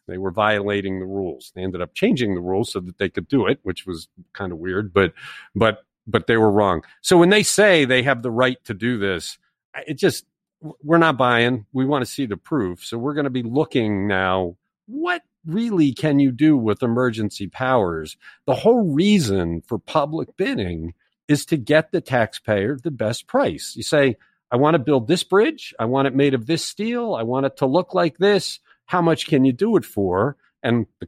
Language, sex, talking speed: English, male, 210 wpm